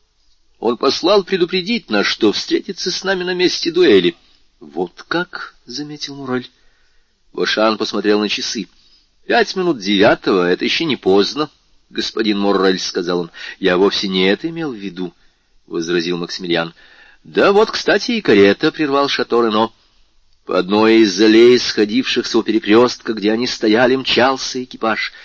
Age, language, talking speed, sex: 40-59, Russian, 155 wpm, male